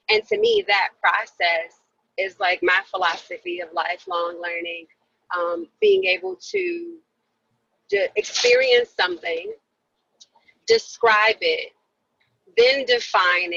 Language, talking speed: English, 95 wpm